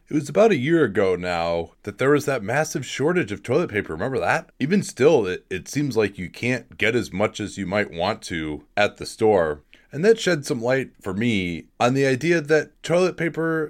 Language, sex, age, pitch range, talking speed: English, male, 30-49, 110-155 Hz, 220 wpm